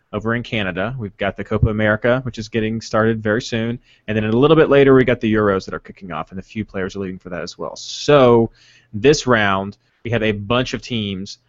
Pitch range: 105-130 Hz